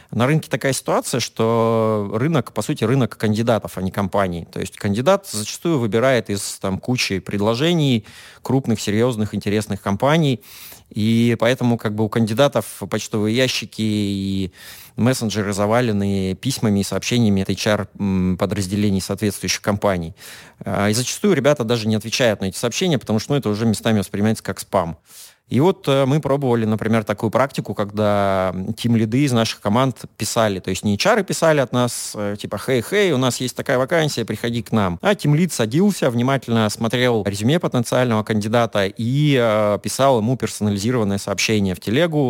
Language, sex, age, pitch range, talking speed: Russian, male, 30-49, 105-130 Hz, 155 wpm